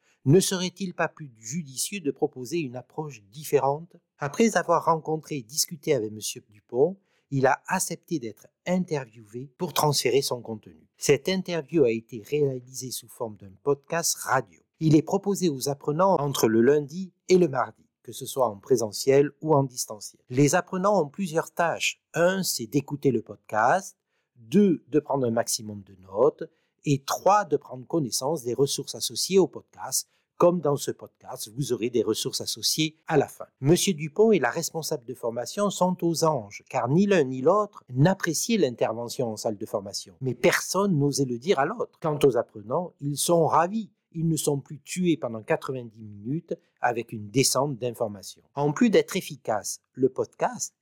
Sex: male